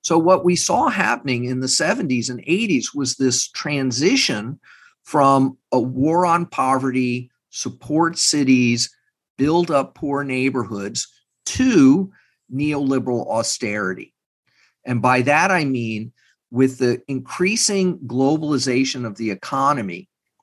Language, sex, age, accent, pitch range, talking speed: English, male, 50-69, American, 125-165 Hz, 115 wpm